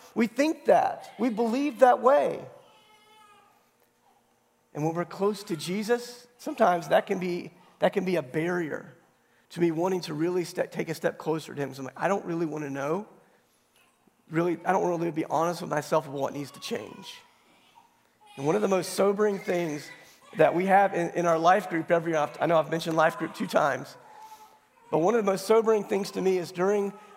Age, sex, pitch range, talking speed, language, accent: 40-59, male, 160-205 Hz, 205 wpm, English, American